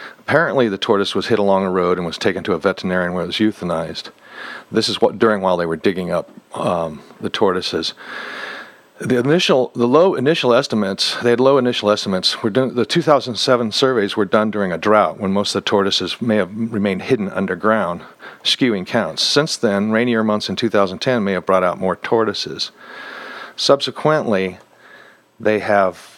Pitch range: 100-125 Hz